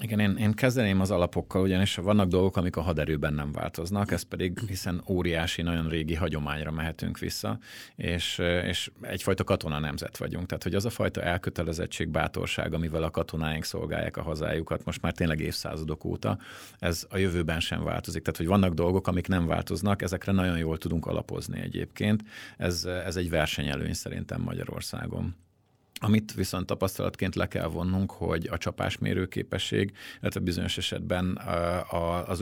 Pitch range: 80-95 Hz